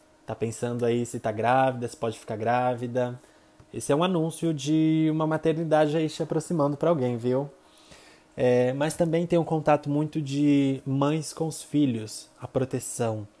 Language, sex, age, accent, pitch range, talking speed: Portuguese, male, 20-39, Brazilian, 115-140 Hz, 165 wpm